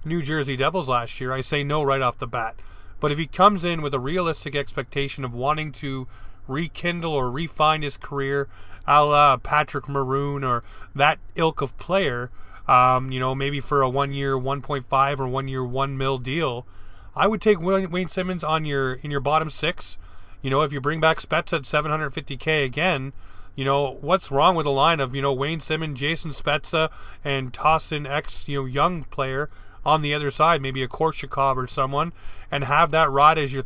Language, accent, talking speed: English, American, 195 wpm